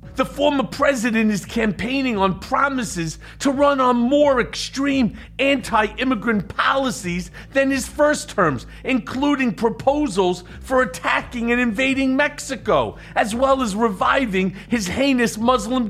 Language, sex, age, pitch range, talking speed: English, male, 40-59, 220-275 Hz, 120 wpm